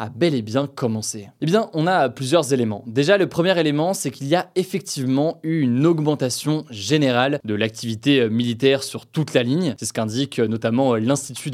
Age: 20-39